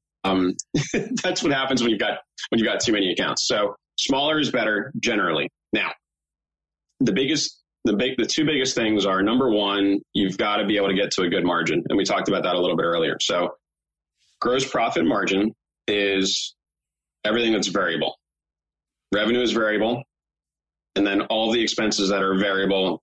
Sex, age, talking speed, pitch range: male, 30-49, 180 wpm, 95-110 Hz